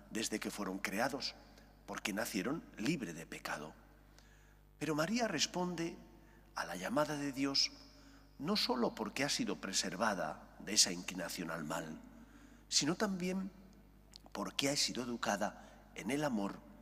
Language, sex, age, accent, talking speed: English, male, 40-59, Spanish, 130 wpm